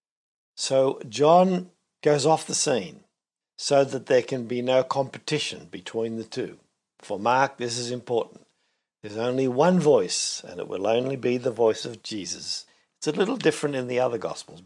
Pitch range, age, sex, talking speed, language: 110-150 Hz, 60-79, male, 170 wpm, English